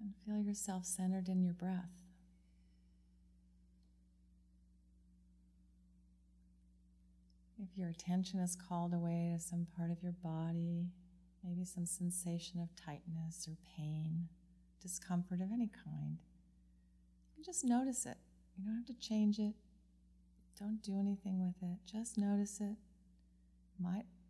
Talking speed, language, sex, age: 120 wpm, English, female, 30-49